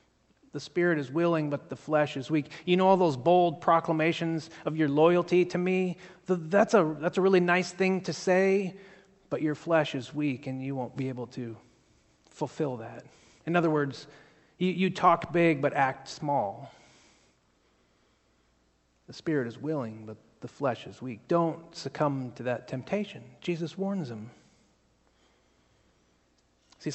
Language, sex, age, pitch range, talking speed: English, male, 30-49, 130-185 Hz, 155 wpm